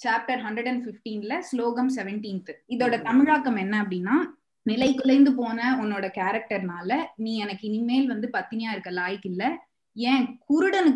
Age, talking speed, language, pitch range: 20-39, 130 wpm, Tamil, 195-255 Hz